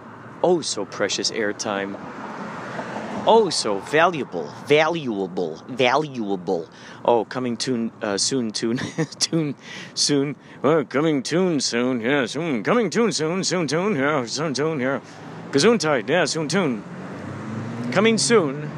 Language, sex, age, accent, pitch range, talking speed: English, male, 40-59, American, 125-165 Hz, 130 wpm